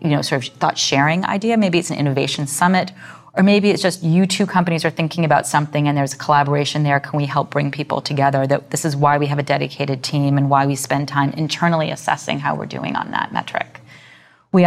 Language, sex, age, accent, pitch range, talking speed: English, female, 30-49, American, 140-155 Hz, 230 wpm